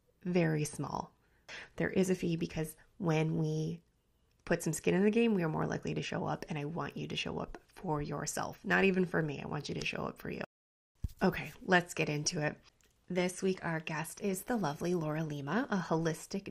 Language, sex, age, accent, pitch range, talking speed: English, female, 20-39, American, 150-185 Hz, 215 wpm